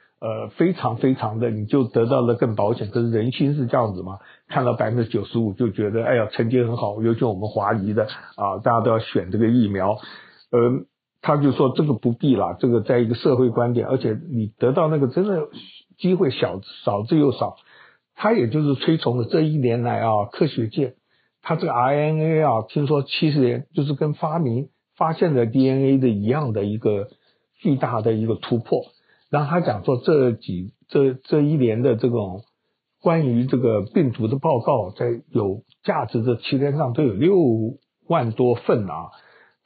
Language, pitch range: Chinese, 110-140 Hz